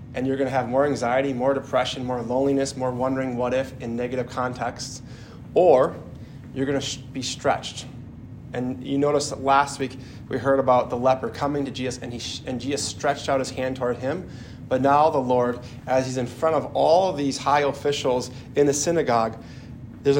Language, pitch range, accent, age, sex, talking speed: English, 120-135 Hz, American, 20-39, male, 200 wpm